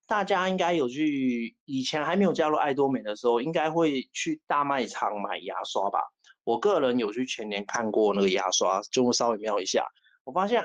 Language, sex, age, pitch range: Chinese, male, 30-49, 120-165 Hz